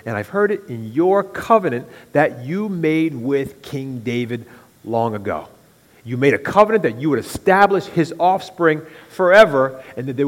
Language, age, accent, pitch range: English, 40-59, American, 115-180 Hz